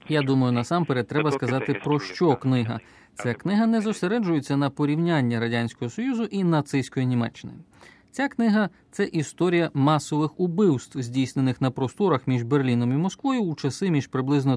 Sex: male